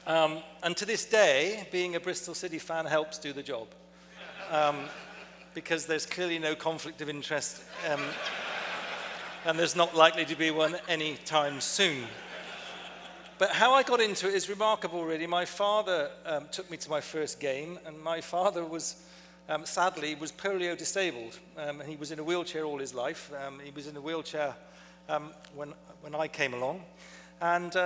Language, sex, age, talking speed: English, male, 40-59, 175 wpm